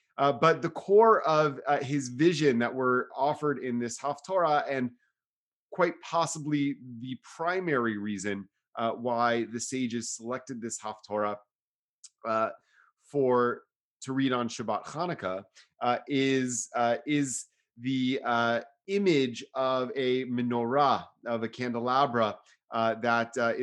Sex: male